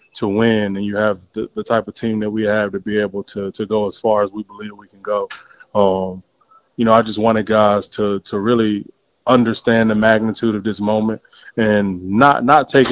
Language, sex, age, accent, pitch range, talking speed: English, male, 20-39, American, 105-115 Hz, 220 wpm